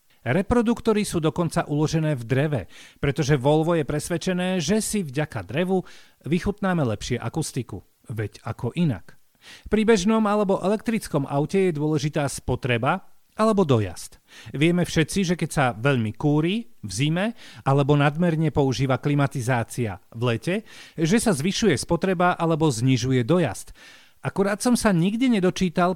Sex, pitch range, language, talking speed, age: male, 130-185 Hz, Slovak, 130 wpm, 40-59